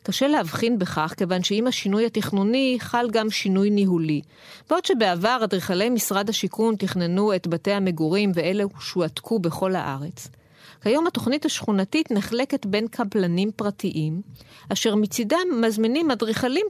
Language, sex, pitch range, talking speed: Hebrew, female, 180-250 Hz, 125 wpm